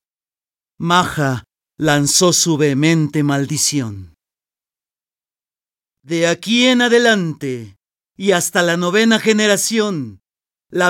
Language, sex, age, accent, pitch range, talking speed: Spanish, male, 40-59, Mexican, 140-210 Hz, 85 wpm